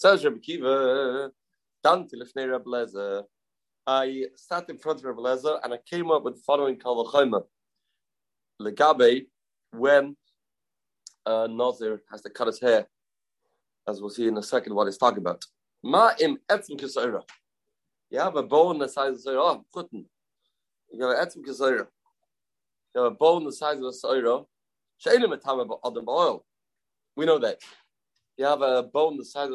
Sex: male